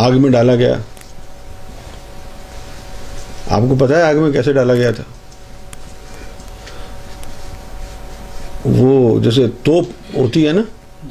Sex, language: male, Urdu